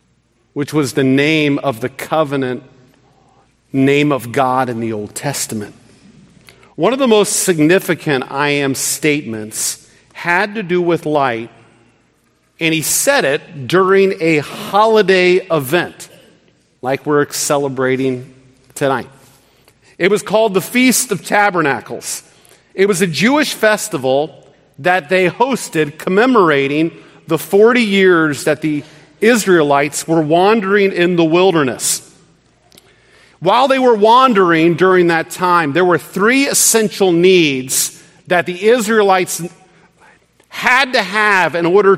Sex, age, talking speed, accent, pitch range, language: male, 40-59, 125 wpm, American, 140-190 Hz, English